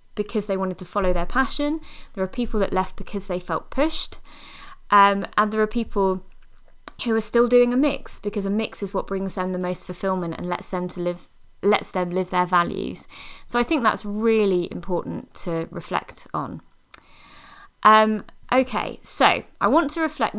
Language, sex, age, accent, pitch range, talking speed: English, female, 20-39, British, 175-230 Hz, 185 wpm